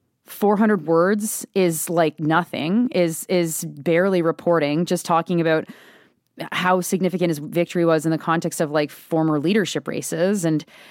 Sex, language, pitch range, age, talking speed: female, English, 170-245 Hz, 30-49, 150 wpm